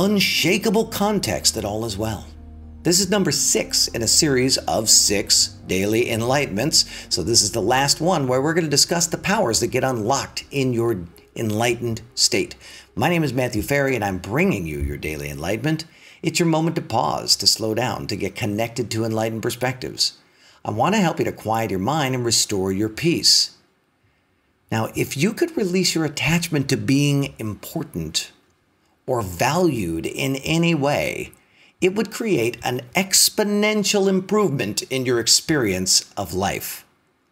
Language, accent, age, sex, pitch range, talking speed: English, American, 50-69, male, 110-165 Hz, 165 wpm